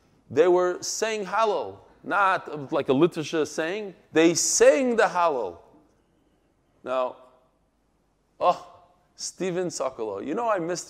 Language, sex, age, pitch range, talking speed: English, male, 30-49, 150-215 Hz, 115 wpm